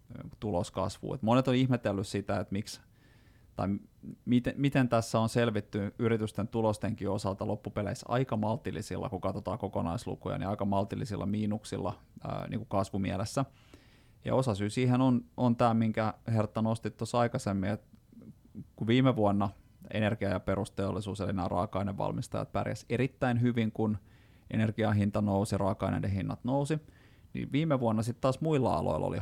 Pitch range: 100-120 Hz